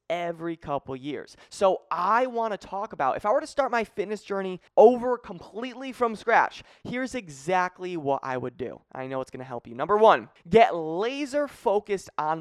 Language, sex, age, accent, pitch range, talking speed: English, male, 20-39, American, 145-205 Hz, 190 wpm